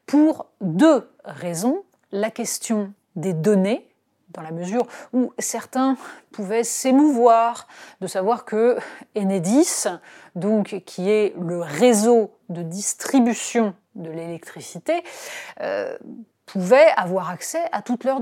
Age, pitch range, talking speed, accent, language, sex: 30-49, 190-255 Hz, 110 wpm, French, French, female